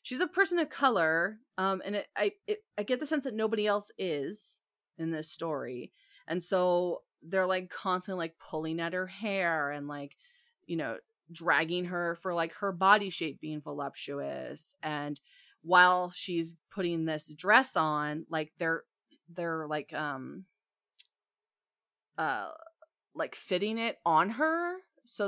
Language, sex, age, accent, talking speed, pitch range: English, female, 30-49, American, 150 wpm, 160-220 Hz